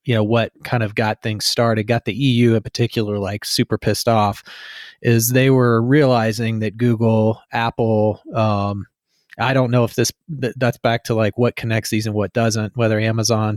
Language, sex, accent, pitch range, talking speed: English, male, American, 110-125 Hz, 185 wpm